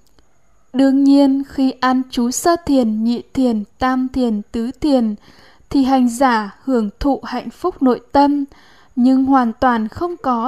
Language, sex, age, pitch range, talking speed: Vietnamese, female, 10-29, 240-275 Hz, 155 wpm